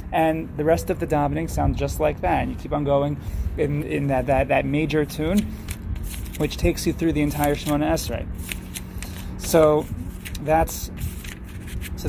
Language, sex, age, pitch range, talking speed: English, male, 20-39, 105-155 Hz, 165 wpm